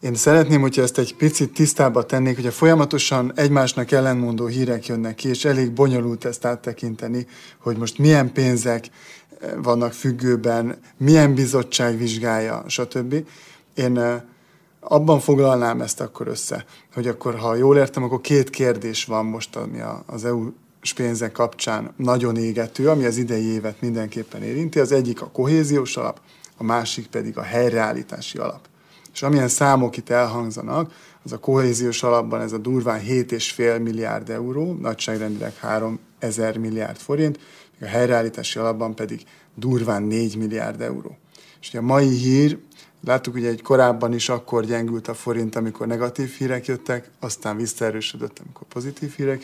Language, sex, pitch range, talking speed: Hungarian, male, 115-135 Hz, 145 wpm